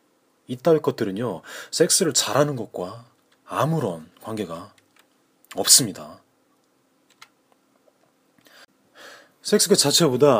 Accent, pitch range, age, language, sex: native, 120-165 Hz, 30-49, Korean, male